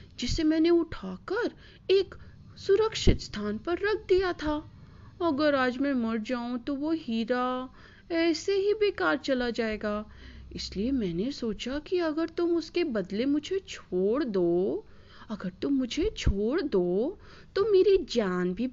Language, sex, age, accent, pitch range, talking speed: Hindi, female, 30-49, native, 230-340 Hz, 140 wpm